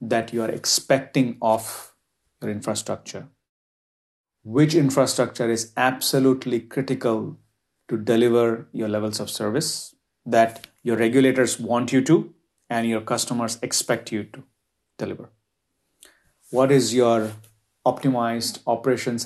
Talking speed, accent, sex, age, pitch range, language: 110 wpm, Indian, male, 30-49, 110-125 Hz, English